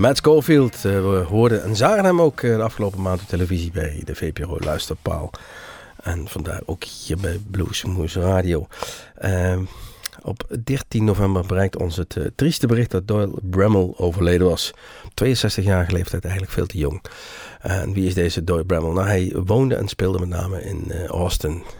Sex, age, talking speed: male, 50-69, 175 wpm